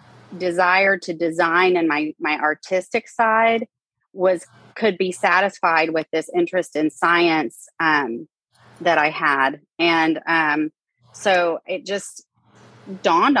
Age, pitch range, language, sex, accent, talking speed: 30-49, 155-180 Hz, English, female, American, 120 wpm